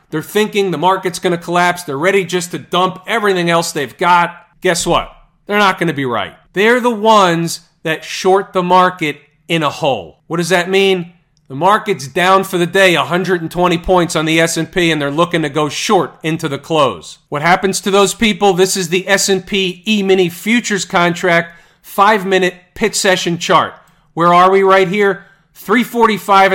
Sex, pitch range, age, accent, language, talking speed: male, 170-200 Hz, 40-59, American, English, 185 wpm